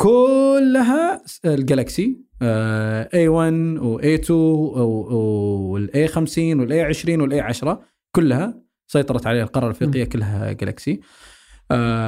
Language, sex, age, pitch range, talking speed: Arabic, male, 20-39, 115-160 Hz, 100 wpm